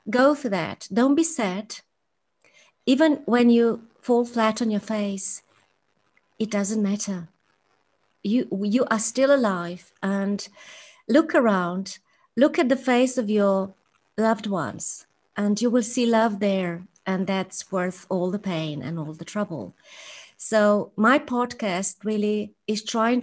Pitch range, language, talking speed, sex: 190-240 Hz, English, 140 wpm, female